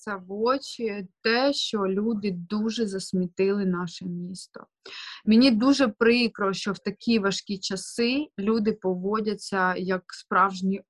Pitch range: 190-230 Hz